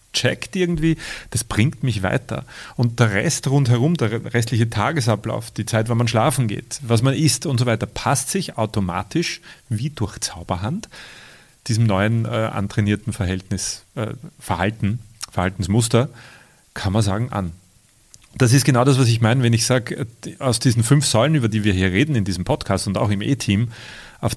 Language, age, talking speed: German, 30-49, 170 wpm